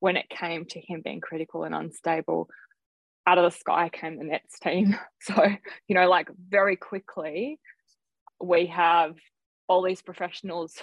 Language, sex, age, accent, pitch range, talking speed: English, female, 20-39, Australian, 170-190 Hz, 155 wpm